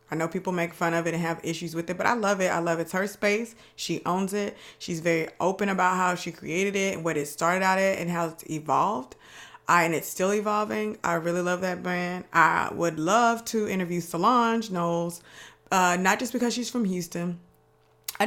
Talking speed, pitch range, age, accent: 220 wpm, 160-190 Hz, 20-39, American